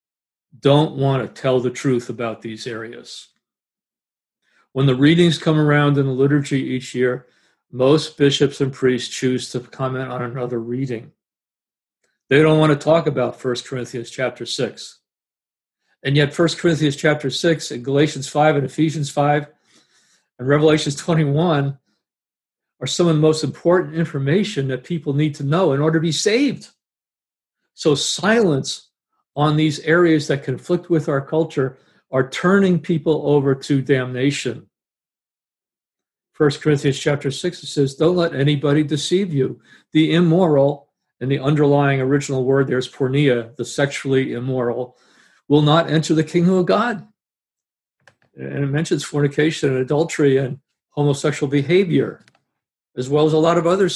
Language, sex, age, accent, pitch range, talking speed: English, male, 50-69, American, 130-155 Hz, 150 wpm